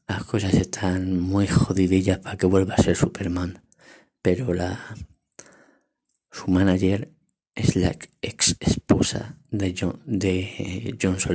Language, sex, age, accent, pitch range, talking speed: Spanish, male, 20-39, Spanish, 95-110 Hz, 120 wpm